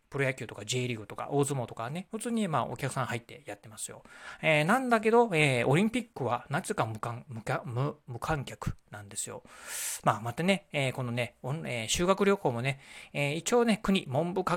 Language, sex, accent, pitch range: Japanese, male, native, 125-170 Hz